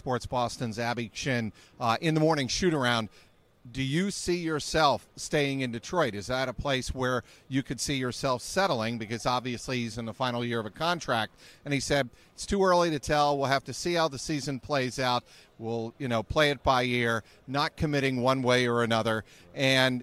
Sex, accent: male, American